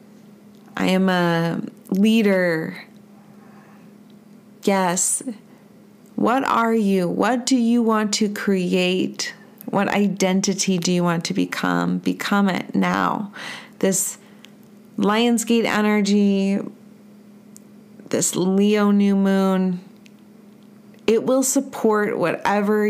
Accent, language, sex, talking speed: American, English, female, 90 wpm